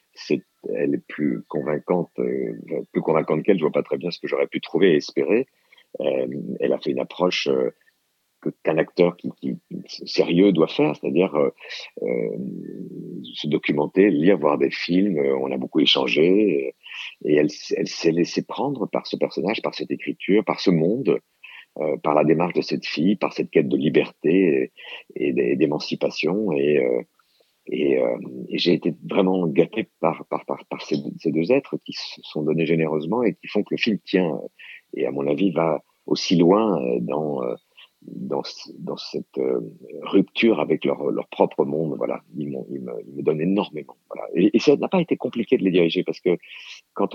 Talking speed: 190 wpm